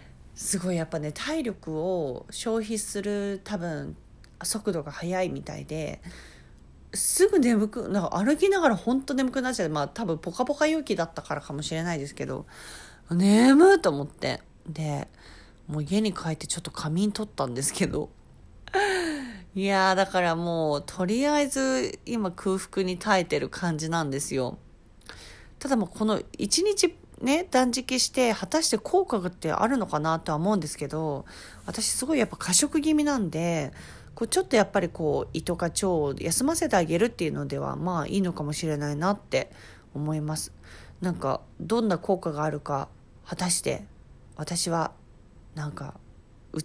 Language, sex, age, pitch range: Japanese, female, 40-59, 150-225 Hz